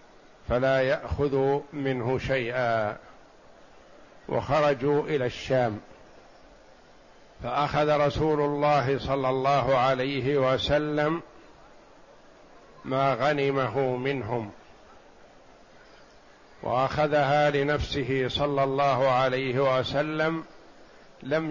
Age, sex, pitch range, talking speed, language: 60-79, male, 130-145 Hz, 65 wpm, Arabic